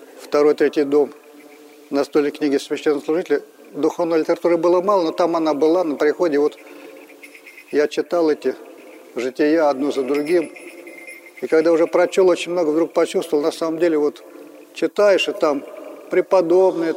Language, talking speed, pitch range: Russian, 140 wpm, 155-180 Hz